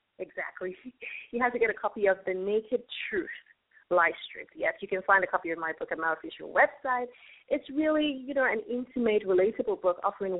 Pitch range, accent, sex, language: 185-255 Hz, American, female, English